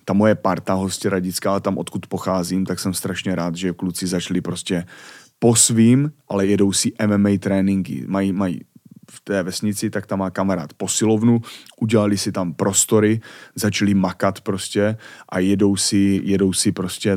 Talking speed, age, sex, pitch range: 160 wpm, 30-49, male, 95-110 Hz